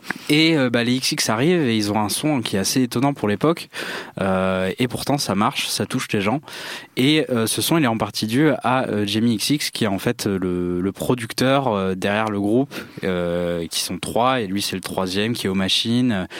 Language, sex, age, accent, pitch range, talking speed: French, male, 20-39, French, 100-125 Hz, 225 wpm